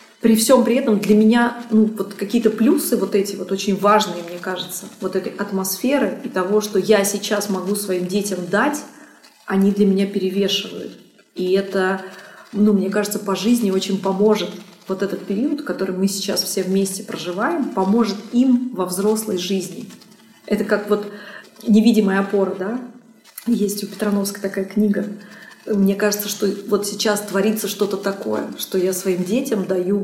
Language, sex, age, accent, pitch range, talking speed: Russian, female, 30-49, native, 195-220 Hz, 160 wpm